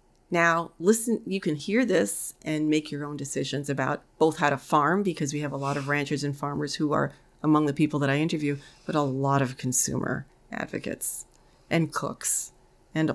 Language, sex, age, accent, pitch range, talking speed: English, female, 40-59, American, 145-165 Hz, 190 wpm